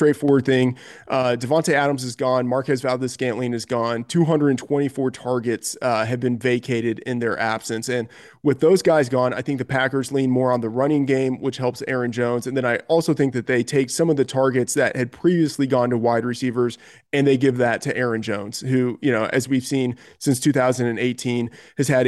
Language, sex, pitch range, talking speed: English, male, 120-140 Hz, 205 wpm